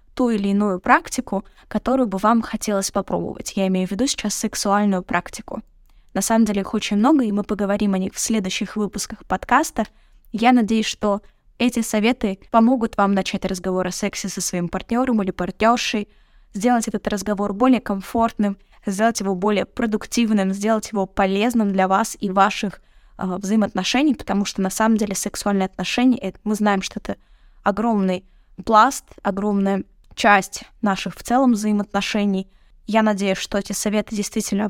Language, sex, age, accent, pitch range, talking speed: Russian, female, 20-39, native, 195-230 Hz, 155 wpm